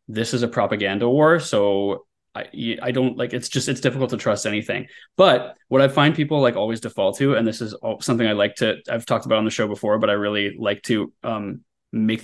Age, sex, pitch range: 20-39, male, 115-140 Hz